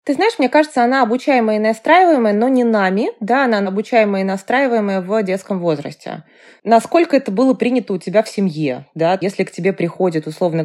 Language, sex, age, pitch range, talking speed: Russian, female, 20-39, 180-230 Hz, 185 wpm